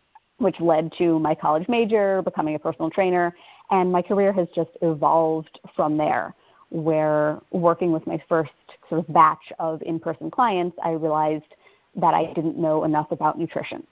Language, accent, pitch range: English, American, 155-175 Hz